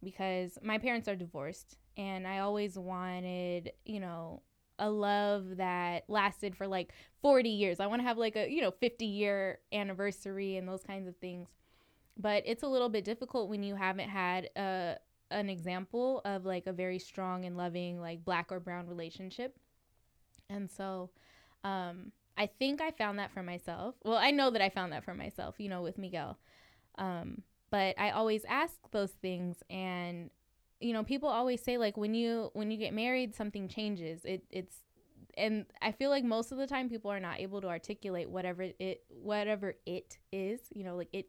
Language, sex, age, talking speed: English, female, 10-29, 190 wpm